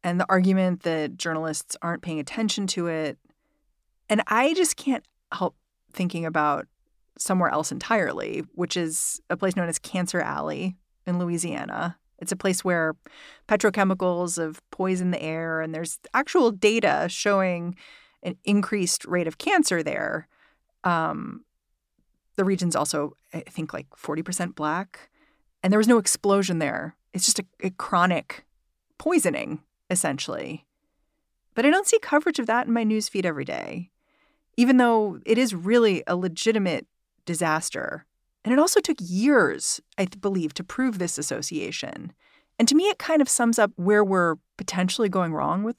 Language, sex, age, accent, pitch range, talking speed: English, female, 30-49, American, 170-225 Hz, 155 wpm